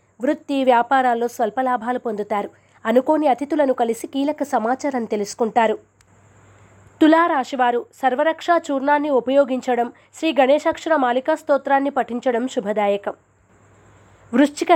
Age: 20-39